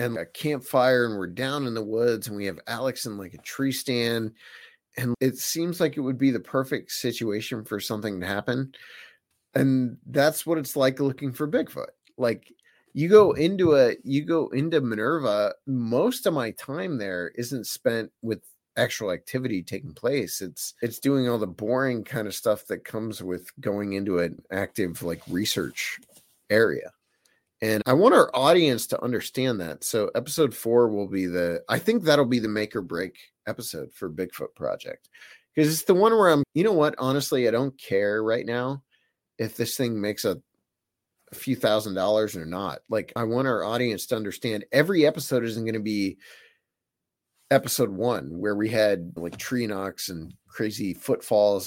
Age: 30-49